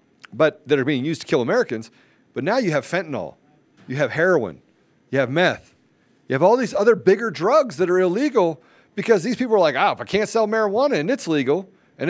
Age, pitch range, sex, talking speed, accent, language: 40-59, 175-240 Hz, male, 220 wpm, American, English